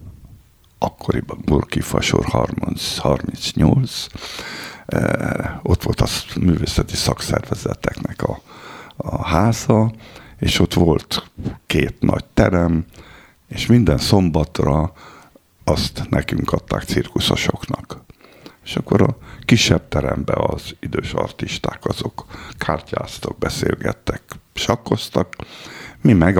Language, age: Hungarian, 60-79